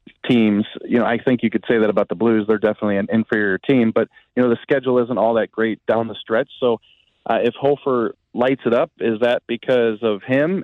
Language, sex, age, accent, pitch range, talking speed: English, male, 30-49, American, 110-135 Hz, 230 wpm